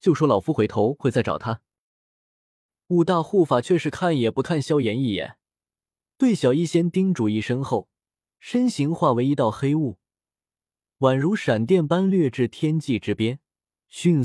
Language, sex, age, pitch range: Chinese, male, 20-39, 115-170 Hz